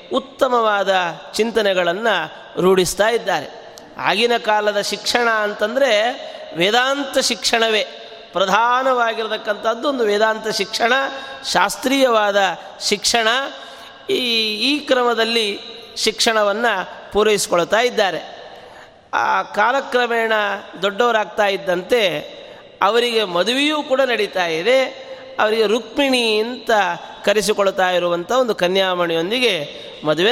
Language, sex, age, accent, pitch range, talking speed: Kannada, male, 30-49, native, 200-255 Hz, 75 wpm